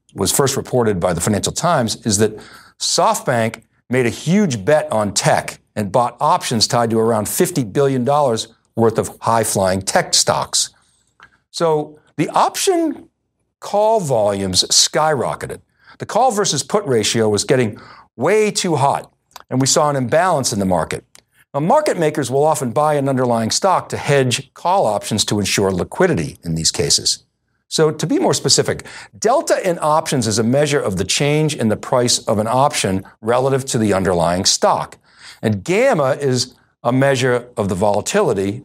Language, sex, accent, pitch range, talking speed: English, male, American, 110-155 Hz, 165 wpm